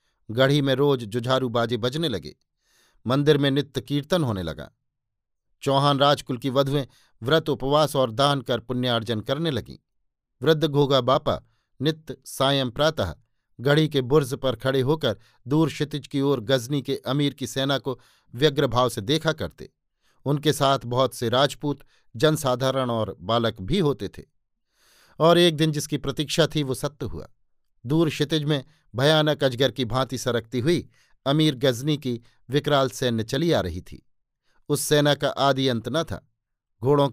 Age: 50-69